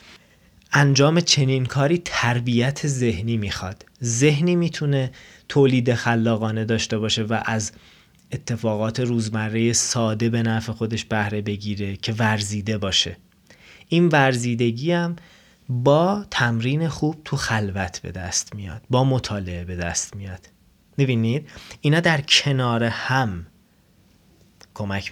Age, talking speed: 30-49, 110 wpm